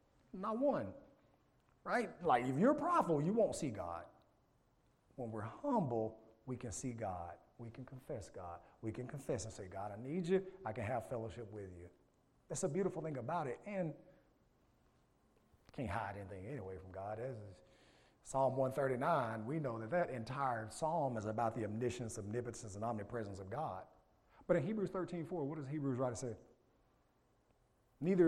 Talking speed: 175 wpm